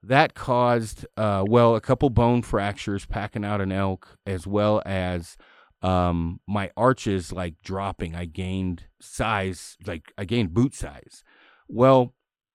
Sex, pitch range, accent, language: male, 95-120 Hz, American, English